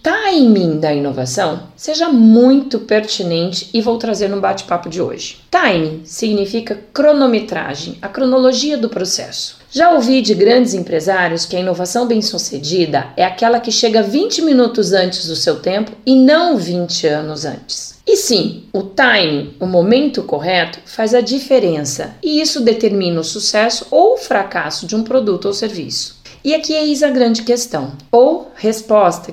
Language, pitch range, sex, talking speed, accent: Portuguese, 175-250 Hz, female, 155 wpm, Brazilian